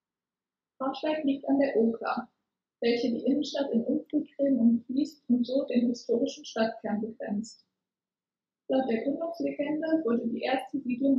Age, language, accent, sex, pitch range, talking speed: 20-39, German, German, female, 235-280 Hz, 135 wpm